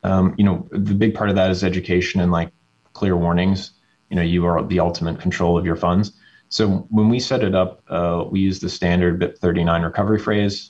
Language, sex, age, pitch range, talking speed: English, male, 30-49, 85-95 Hz, 220 wpm